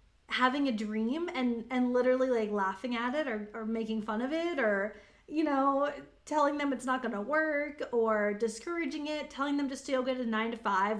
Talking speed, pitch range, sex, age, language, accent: 200 wpm, 220-295 Hz, female, 20-39, English, American